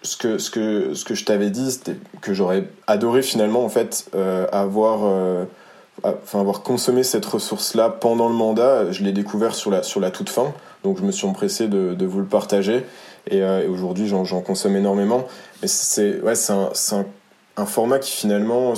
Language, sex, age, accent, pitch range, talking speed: French, male, 20-39, French, 100-120 Hz, 210 wpm